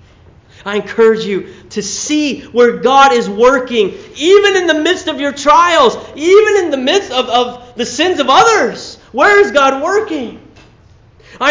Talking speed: 160 wpm